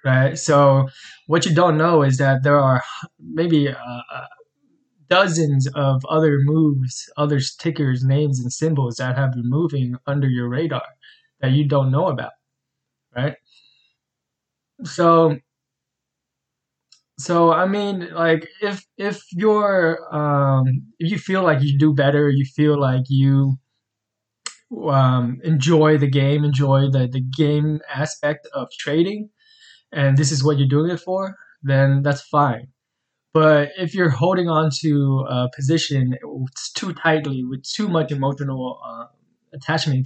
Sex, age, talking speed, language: male, 20-39, 140 wpm, English